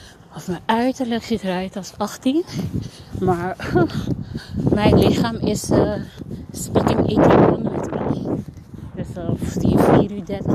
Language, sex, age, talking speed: Dutch, female, 30-49, 120 wpm